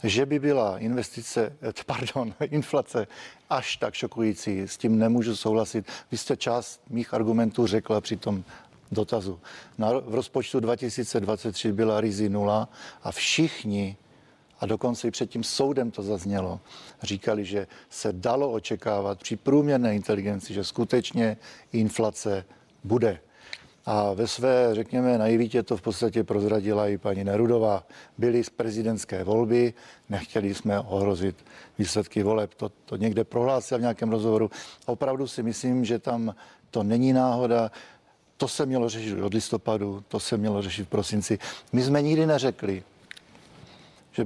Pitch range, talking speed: 105-120 Hz, 140 wpm